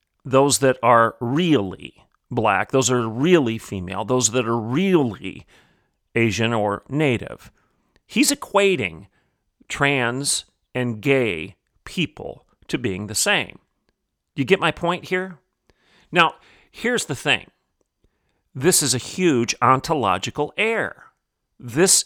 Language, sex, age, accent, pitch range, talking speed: English, male, 40-59, American, 125-155 Hz, 115 wpm